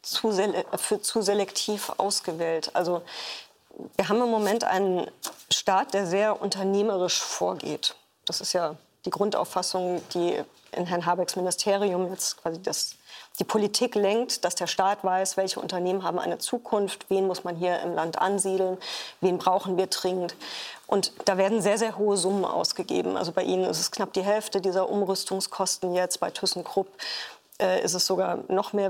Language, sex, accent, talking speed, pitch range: German, female, German, 160 wpm, 185-205 Hz